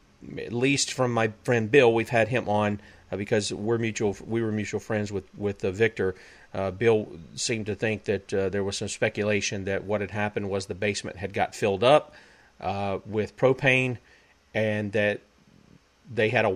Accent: American